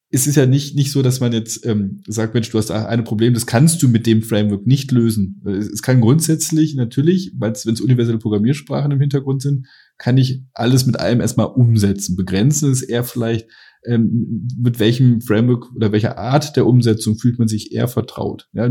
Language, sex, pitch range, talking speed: German, male, 115-135 Hz, 210 wpm